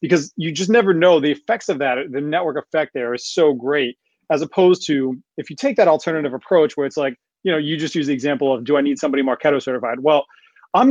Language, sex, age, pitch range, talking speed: English, male, 30-49, 135-170 Hz, 240 wpm